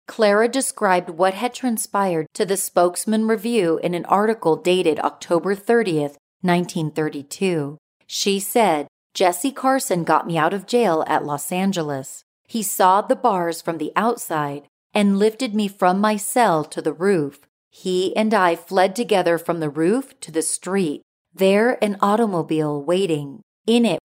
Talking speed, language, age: 150 wpm, English, 40-59